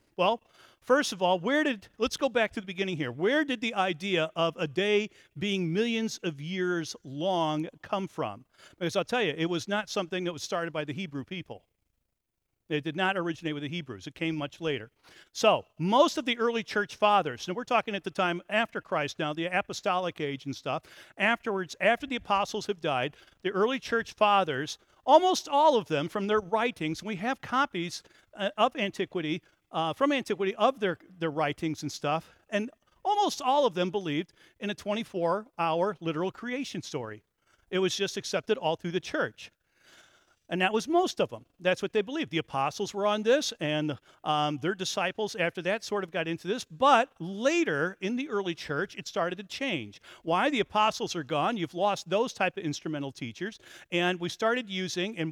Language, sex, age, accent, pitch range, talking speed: English, male, 50-69, American, 165-215 Hz, 195 wpm